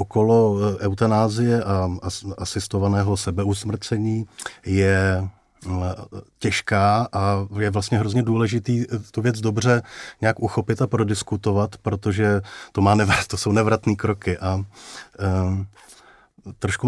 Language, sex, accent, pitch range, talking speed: Czech, male, native, 100-110 Hz, 90 wpm